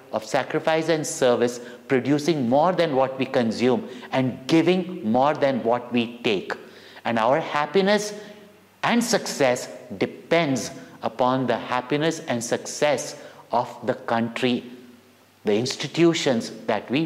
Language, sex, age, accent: English, male, 60-79, Indian